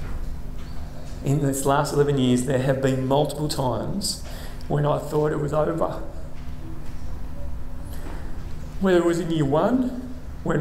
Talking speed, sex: 130 wpm, male